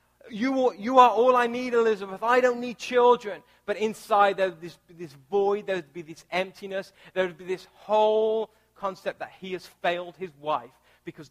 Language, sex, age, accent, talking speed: English, male, 30-49, British, 195 wpm